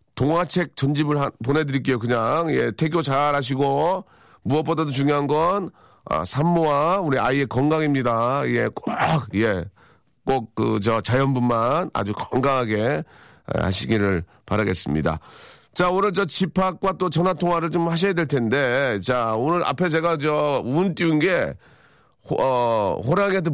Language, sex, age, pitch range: Korean, male, 40-59, 120-165 Hz